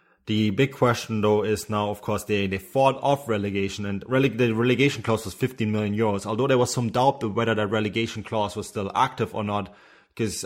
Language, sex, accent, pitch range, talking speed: English, male, German, 100-120 Hz, 210 wpm